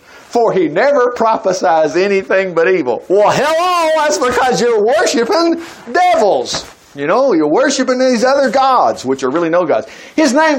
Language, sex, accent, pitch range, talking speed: English, male, American, 185-280 Hz, 160 wpm